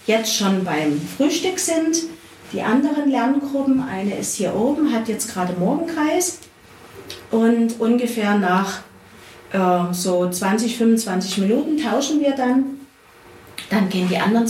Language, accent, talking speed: German, German, 130 wpm